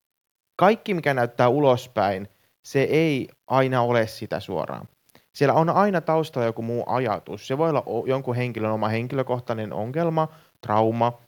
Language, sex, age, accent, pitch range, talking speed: Finnish, male, 30-49, native, 110-130 Hz, 140 wpm